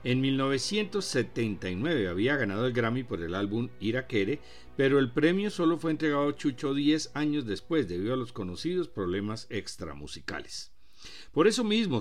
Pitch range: 100-150 Hz